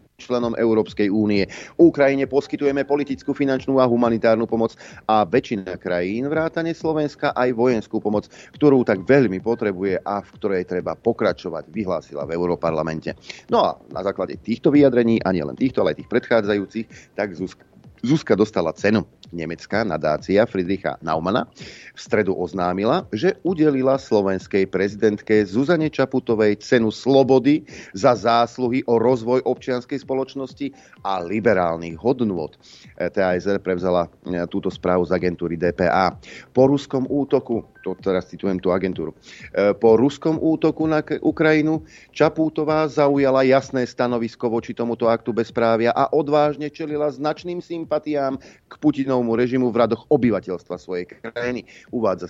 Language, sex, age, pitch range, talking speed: Slovak, male, 40-59, 100-135 Hz, 130 wpm